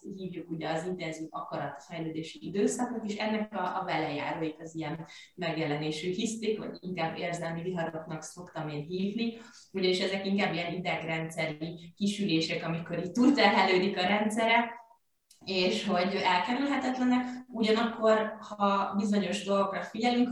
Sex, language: female, Hungarian